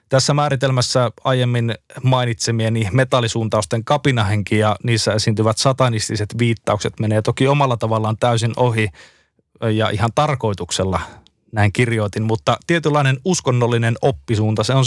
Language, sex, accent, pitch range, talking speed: Finnish, male, native, 115-135 Hz, 115 wpm